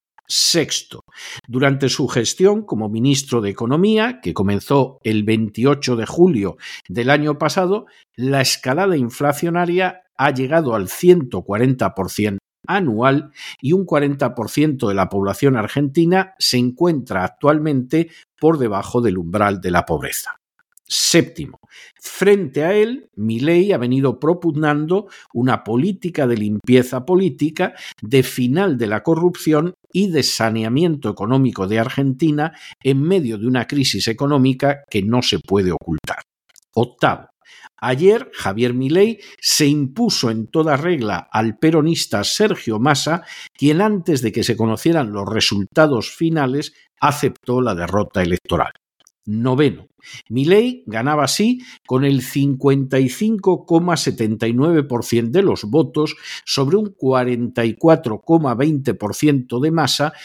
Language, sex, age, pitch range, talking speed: Spanish, male, 50-69, 115-160 Hz, 120 wpm